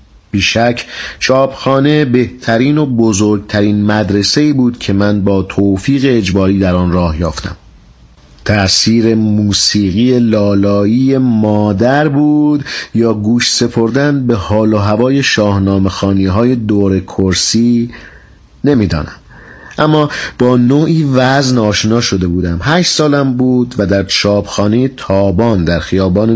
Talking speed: 115 wpm